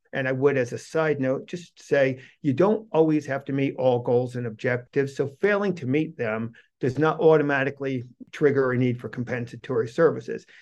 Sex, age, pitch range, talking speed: male, 50-69, 125-155 Hz, 185 wpm